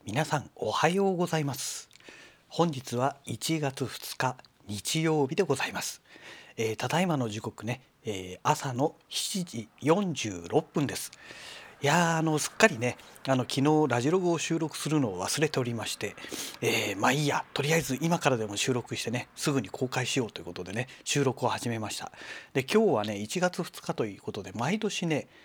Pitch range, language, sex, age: 110-150 Hz, Japanese, male, 40-59